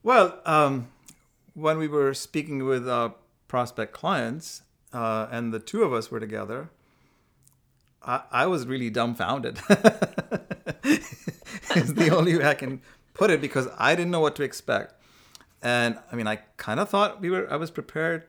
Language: English